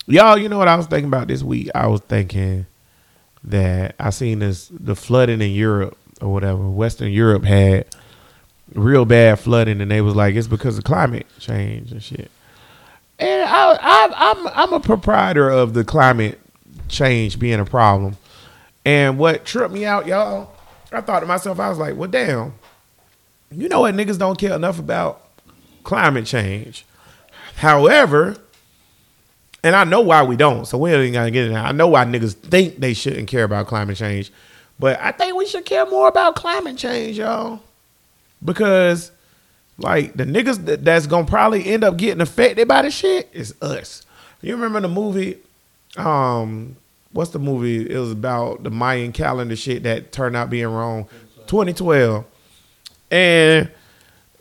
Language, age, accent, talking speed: English, 30-49, American, 170 wpm